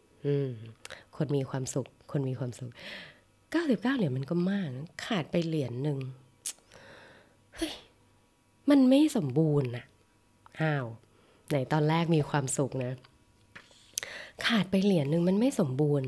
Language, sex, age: Thai, female, 20-39